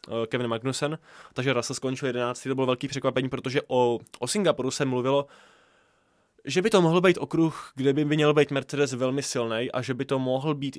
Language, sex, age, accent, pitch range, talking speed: Czech, male, 20-39, native, 120-140 Hz, 195 wpm